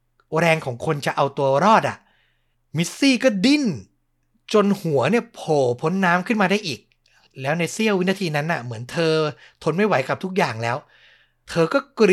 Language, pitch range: Thai, 120-165 Hz